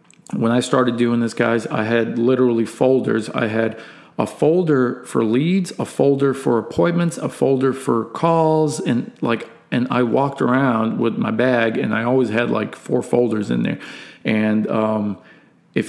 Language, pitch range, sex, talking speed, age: English, 115-135 Hz, male, 170 wpm, 40-59